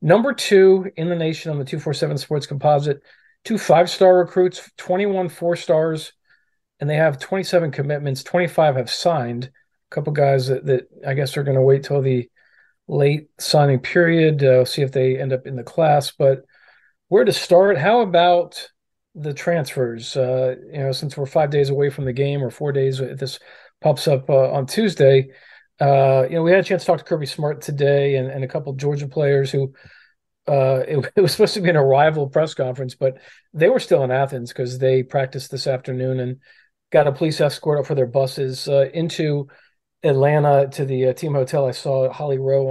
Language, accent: English, American